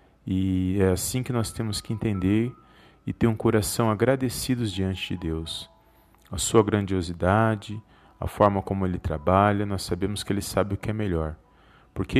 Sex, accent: male, Brazilian